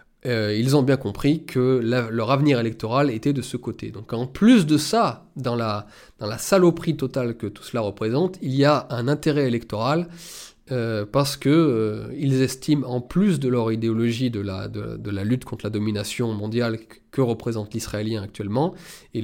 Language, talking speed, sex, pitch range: French, 175 wpm, male, 110-140 Hz